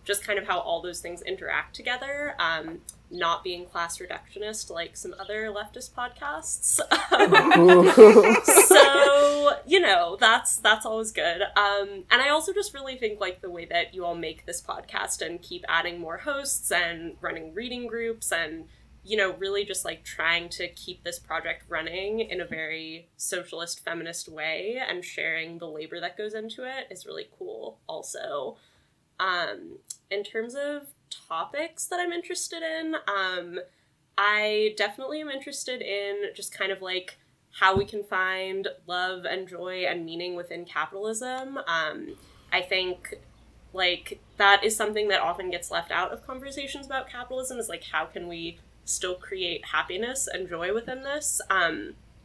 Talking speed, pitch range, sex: 160 wpm, 175-255 Hz, female